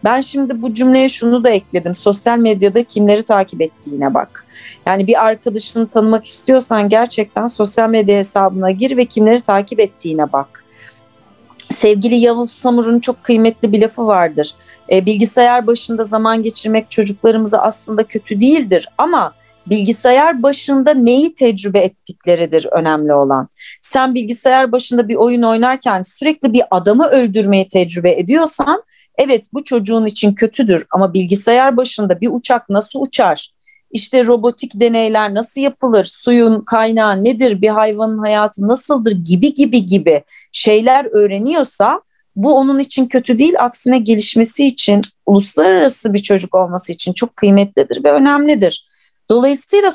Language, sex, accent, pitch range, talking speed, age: Turkish, female, native, 200-255 Hz, 135 wpm, 40-59